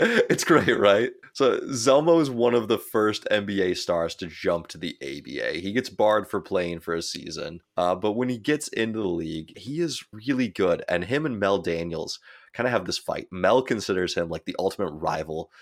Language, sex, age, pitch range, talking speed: English, male, 20-39, 85-105 Hz, 210 wpm